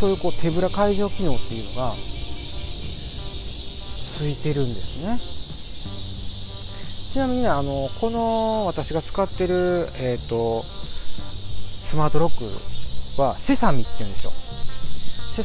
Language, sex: Japanese, male